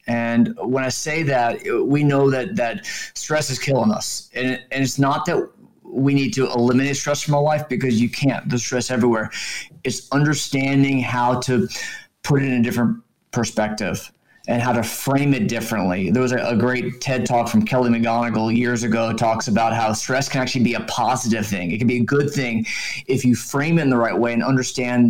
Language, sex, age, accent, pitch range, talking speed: English, male, 30-49, American, 115-135 Hz, 205 wpm